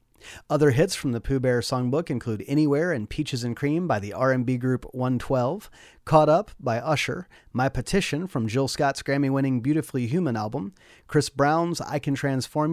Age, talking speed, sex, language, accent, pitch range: 30-49, 170 wpm, male, English, American, 120-170 Hz